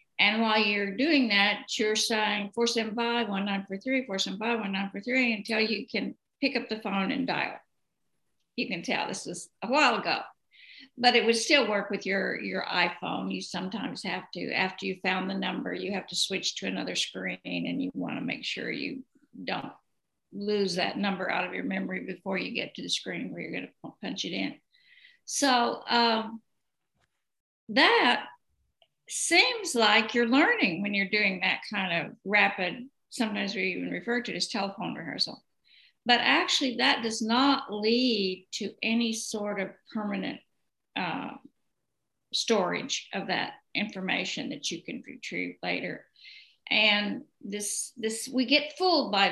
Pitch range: 200-250 Hz